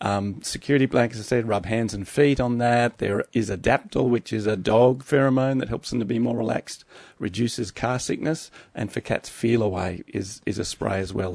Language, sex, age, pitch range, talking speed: English, male, 40-59, 105-125 Hz, 210 wpm